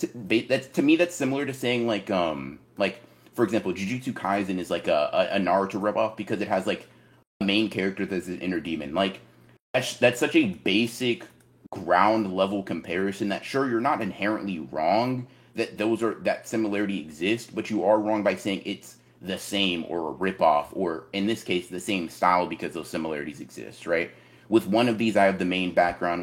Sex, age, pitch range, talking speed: male, 30-49, 95-120 Hz, 200 wpm